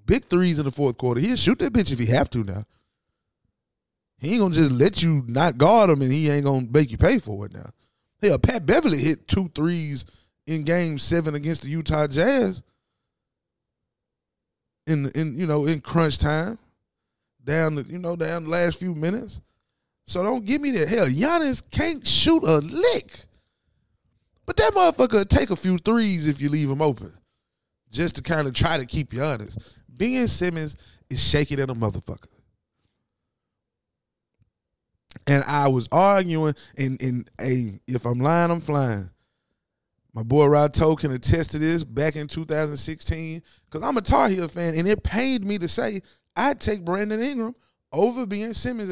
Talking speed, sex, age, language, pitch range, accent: 175 wpm, male, 20-39, English, 125-190 Hz, American